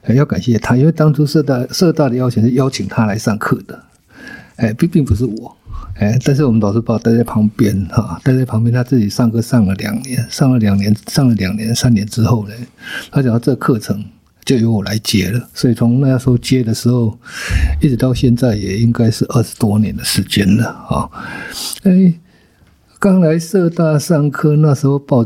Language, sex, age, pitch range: Chinese, male, 50-69, 110-130 Hz